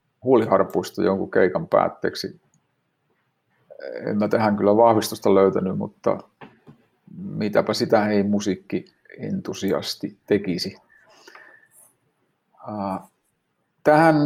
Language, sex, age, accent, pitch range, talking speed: Finnish, male, 50-69, native, 105-125 Hz, 65 wpm